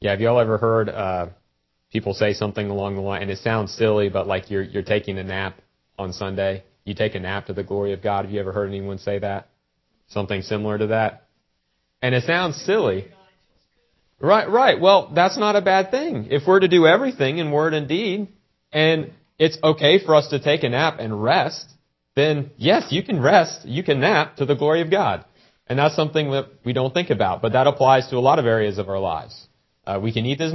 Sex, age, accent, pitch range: male, 30-49, American, 95-140 Hz